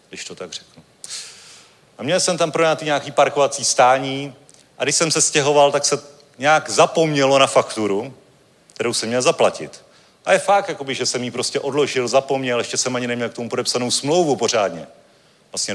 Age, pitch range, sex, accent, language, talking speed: 40-59, 125-160 Hz, male, native, Czech, 185 wpm